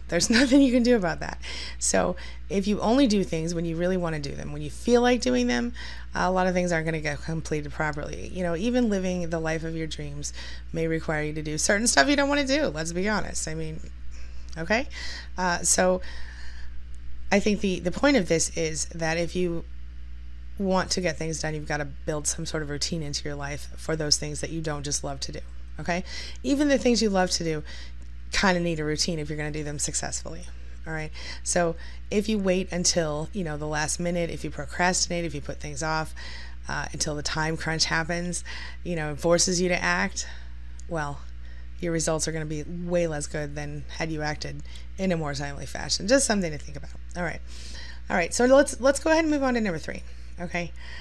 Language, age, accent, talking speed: English, 20-39, American, 225 wpm